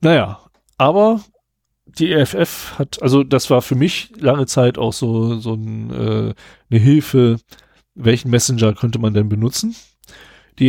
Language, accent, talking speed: German, German, 145 wpm